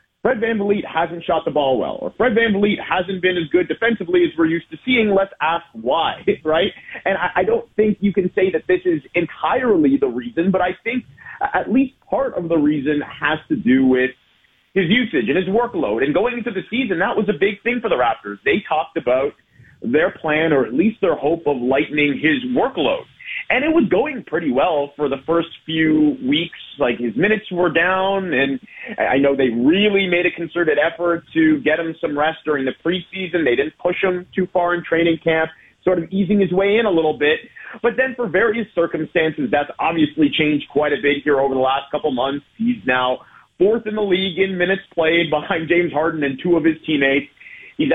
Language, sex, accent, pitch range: English, male, American, 150-205 Hz